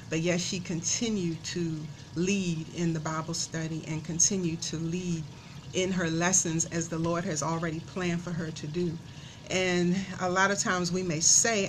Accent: American